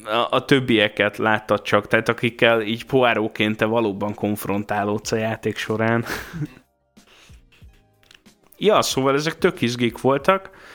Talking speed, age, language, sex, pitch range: 105 wpm, 20-39, Hungarian, male, 105-130 Hz